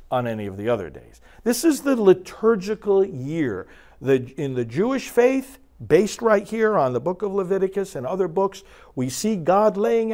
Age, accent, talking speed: 50-69, American, 185 wpm